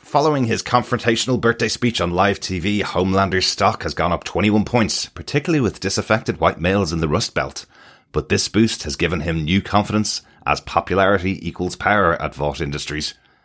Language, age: English, 30-49